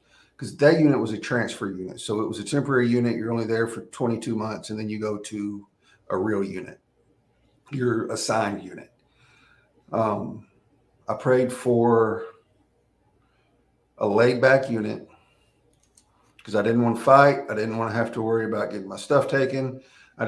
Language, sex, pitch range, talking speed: English, male, 105-125 Hz, 170 wpm